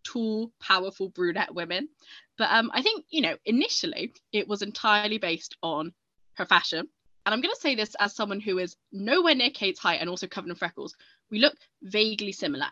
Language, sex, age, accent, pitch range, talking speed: English, female, 10-29, British, 180-280 Hz, 190 wpm